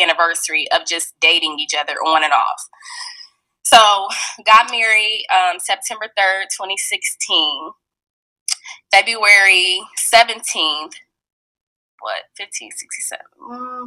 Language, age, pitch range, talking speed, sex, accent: English, 10-29, 170-220 Hz, 85 wpm, female, American